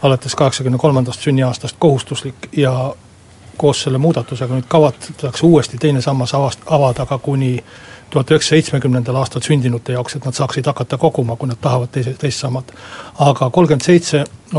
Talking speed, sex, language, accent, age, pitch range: 130 wpm, male, Finnish, native, 60-79, 125-155 Hz